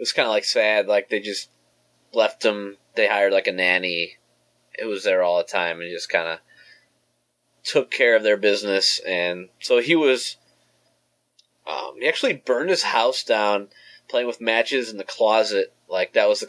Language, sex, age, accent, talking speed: English, male, 20-39, American, 195 wpm